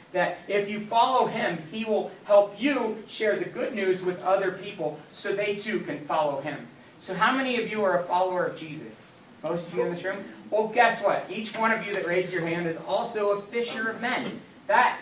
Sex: male